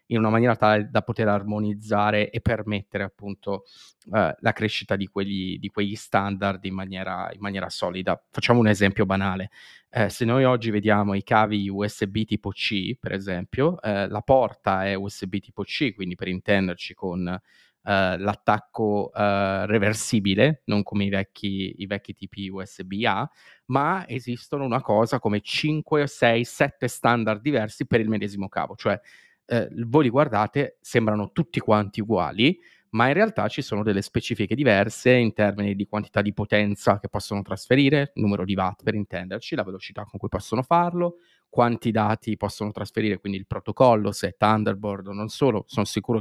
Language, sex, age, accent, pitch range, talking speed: Italian, male, 30-49, native, 100-120 Hz, 165 wpm